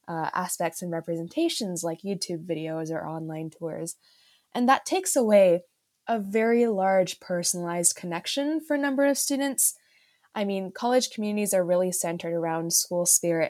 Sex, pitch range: female, 170-210 Hz